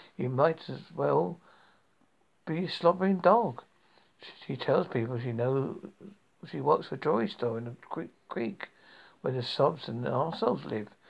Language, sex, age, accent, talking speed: English, male, 60-79, British, 155 wpm